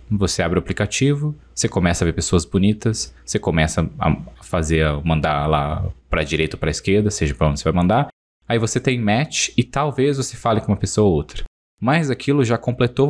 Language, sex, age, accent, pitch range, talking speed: Portuguese, male, 20-39, Brazilian, 80-110 Hz, 210 wpm